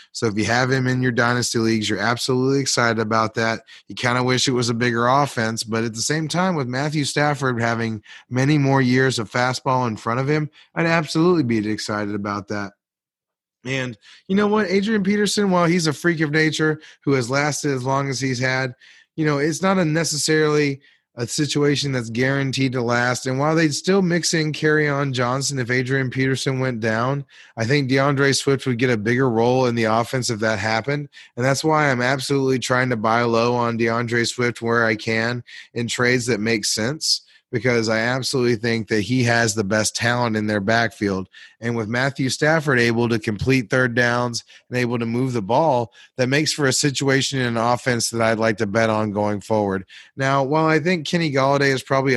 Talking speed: 205 wpm